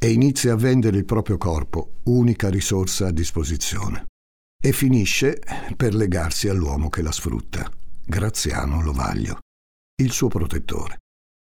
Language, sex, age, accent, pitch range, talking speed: Italian, male, 60-79, native, 75-105 Hz, 125 wpm